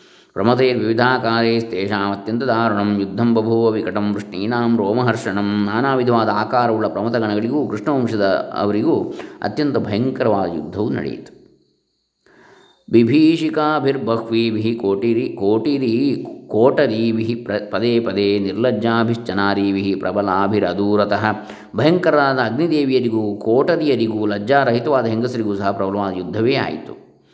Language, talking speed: Kannada, 80 wpm